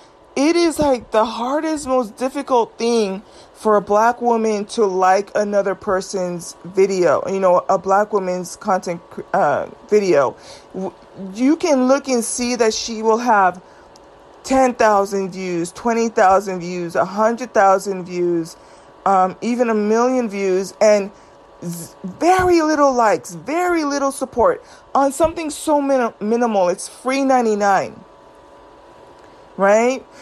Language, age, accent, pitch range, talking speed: English, 30-49, American, 190-255 Hz, 125 wpm